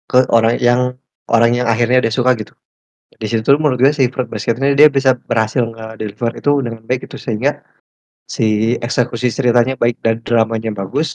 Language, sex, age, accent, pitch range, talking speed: Indonesian, male, 20-39, native, 115-130 Hz, 180 wpm